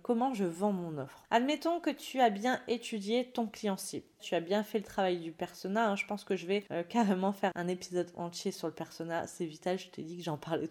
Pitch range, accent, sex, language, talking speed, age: 185-245 Hz, French, female, French, 240 wpm, 20-39